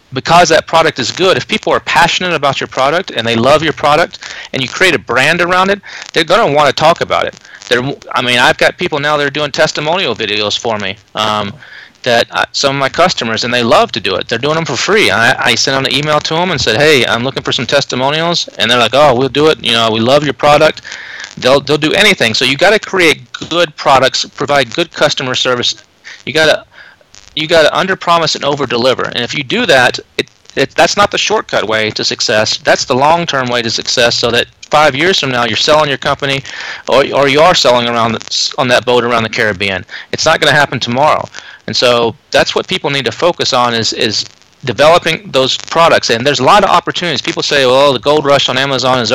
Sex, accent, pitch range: male, American, 120-155 Hz